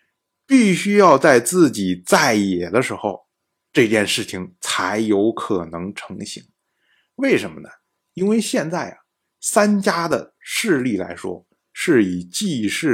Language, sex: Chinese, male